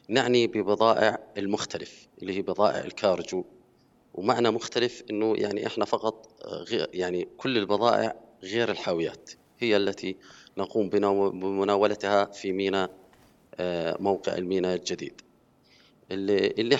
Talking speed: 100 wpm